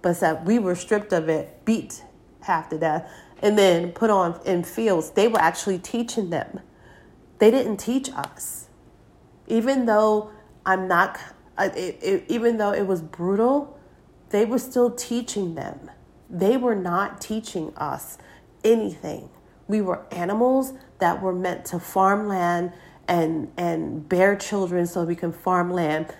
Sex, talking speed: female, 150 wpm